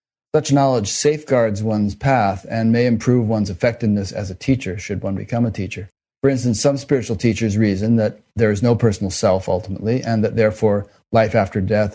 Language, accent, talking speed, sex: English, American, 185 wpm, male